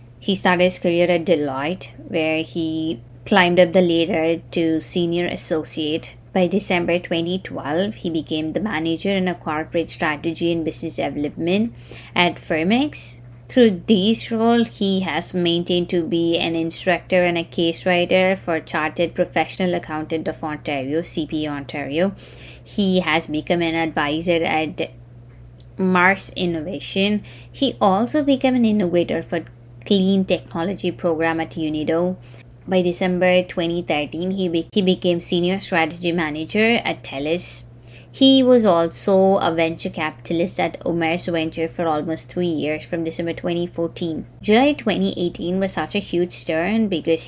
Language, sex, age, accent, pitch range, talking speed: English, female, 20-39, Indian, 160-185 Hz, 135 wpm